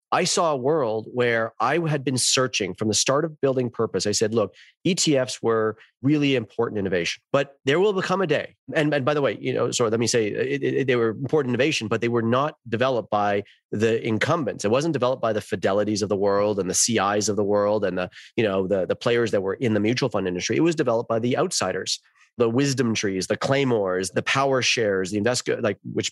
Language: English